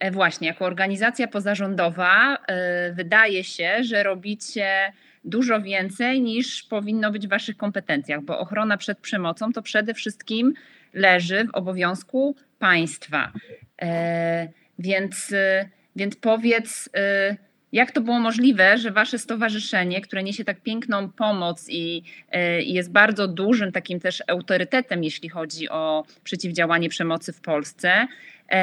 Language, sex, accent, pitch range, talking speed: Polish, female, native, 180-220 Hz, 115 wpm